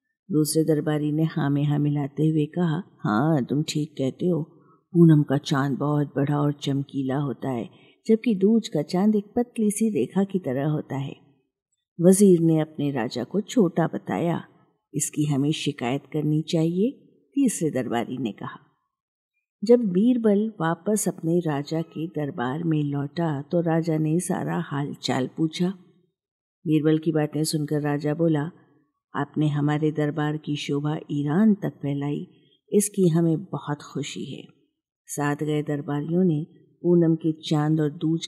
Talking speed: 145 wpm